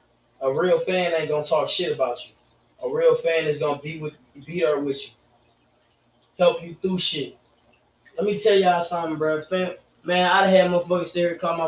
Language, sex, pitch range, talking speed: English, male, 145-185 Hz, 200 wpm